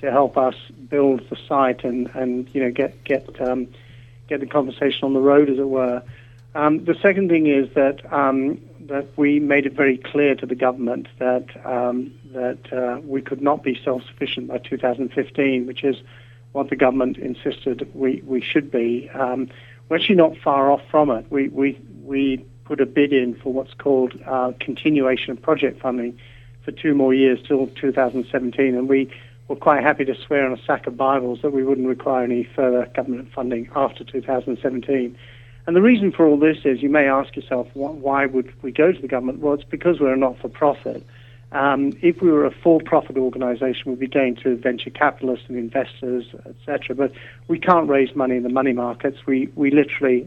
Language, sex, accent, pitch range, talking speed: English, male, British, 125-140 Hz, 195 wpm